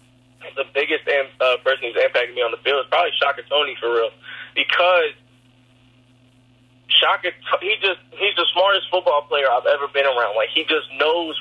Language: English